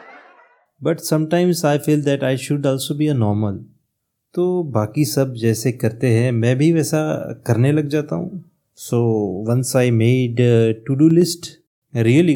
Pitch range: 130-175 Hz